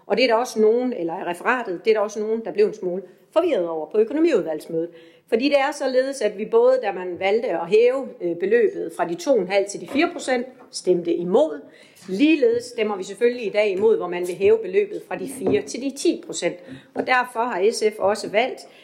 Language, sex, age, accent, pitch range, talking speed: Danish, female, 40-59, native, 185-260 Hz, 220 wpm